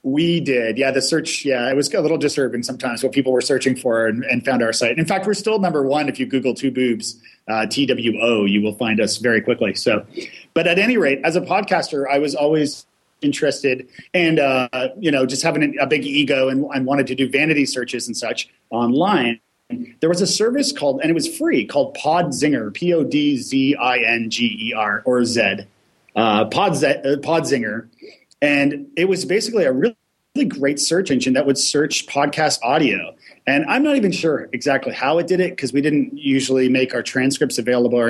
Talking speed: 195 wpm